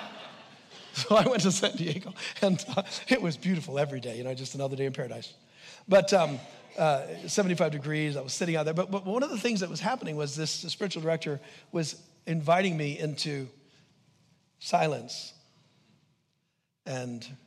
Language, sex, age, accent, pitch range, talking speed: English, male, 50-69, American, 135-165 Hz, 170 wpm